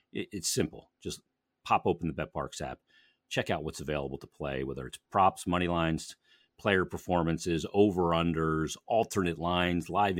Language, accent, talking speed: English, American, 145 wpm